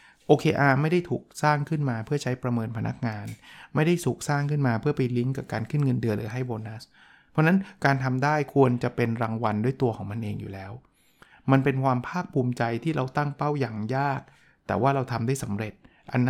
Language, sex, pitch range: Thai, male, 125-160 Hz